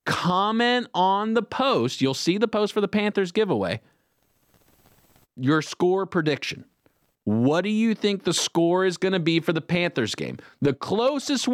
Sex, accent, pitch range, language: male, American, 150-215 Hz, English